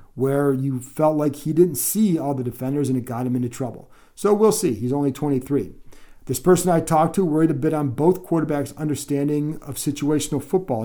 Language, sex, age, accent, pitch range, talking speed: English, male, 40-59, American, 130-155 Hz, 205 wpm